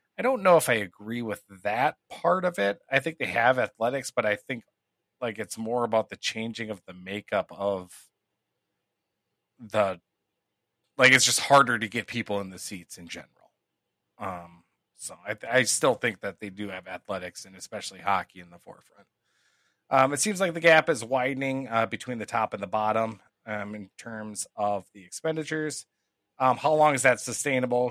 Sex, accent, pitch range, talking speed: male, American, 100-125 Hz, 185 wpm